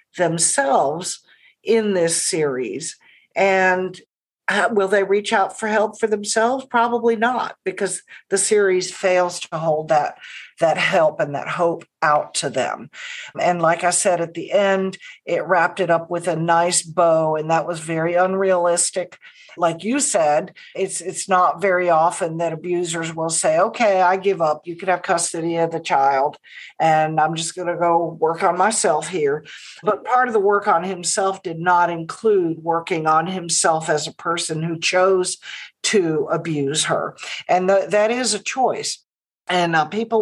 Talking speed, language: 170 wpm, English